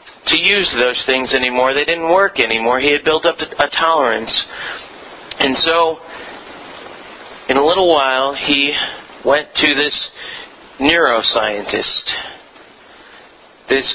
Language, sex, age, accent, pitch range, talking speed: English, male, 40-59, American, 140-175 Hz, 115 wpm